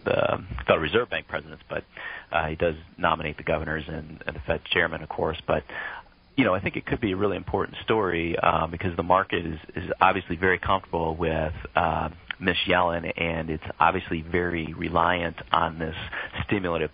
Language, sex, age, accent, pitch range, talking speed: English, male, 40-59, American, 80-90 Hz, 185 wpm